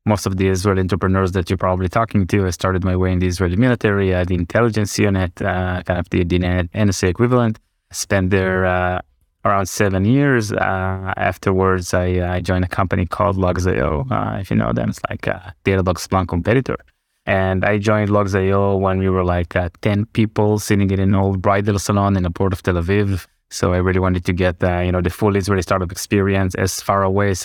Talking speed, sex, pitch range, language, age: 210 wpm, male, 90-100 Hz, English, 20-39